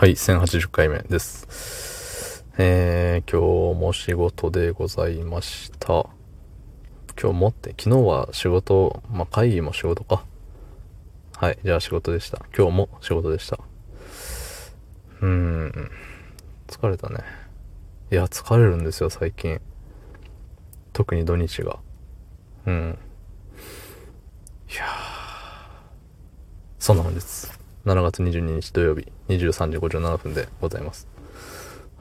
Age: 20-39